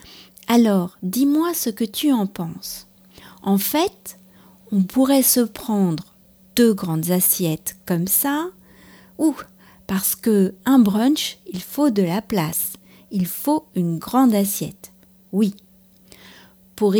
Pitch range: 190-255 Hz